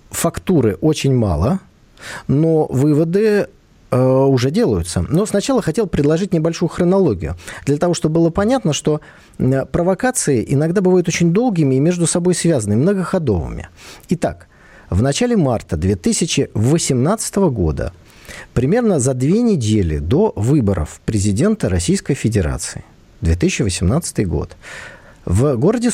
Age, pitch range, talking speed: 40-59, 105-170 Hz, 115 wpm